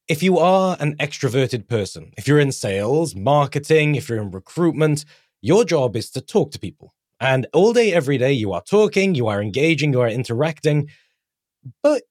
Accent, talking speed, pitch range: British, 185 wpm, 125-160 Hz